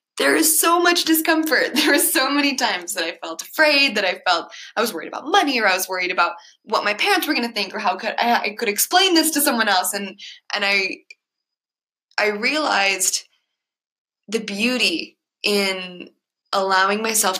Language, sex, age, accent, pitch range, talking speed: English, female, 20-39, American, 185-260 Hz, 190 wpm